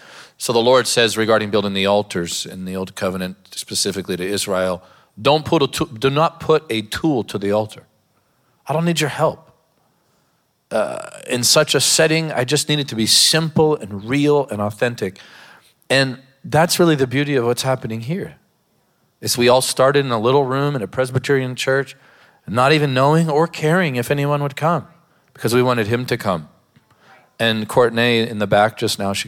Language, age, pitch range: English, 40-59, 110-145 Hz